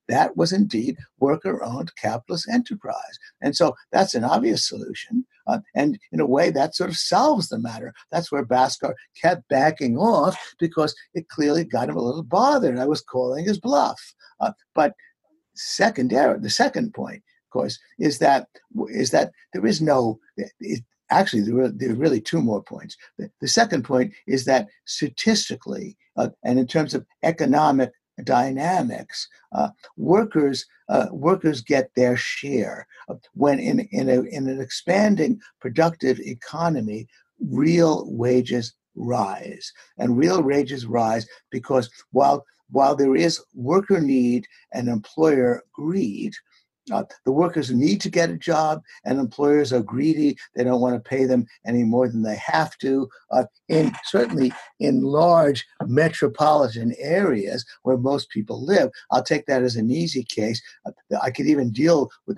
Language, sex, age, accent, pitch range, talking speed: English, male, 60-79, American, 125-170 Hz, 155 wpm